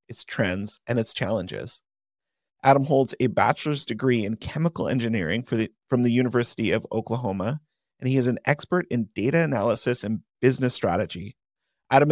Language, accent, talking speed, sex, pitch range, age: English, American, 150 wpm, male, 115-145 Hz, 30-49